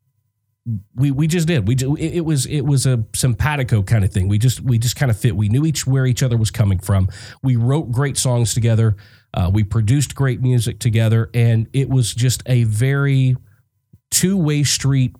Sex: male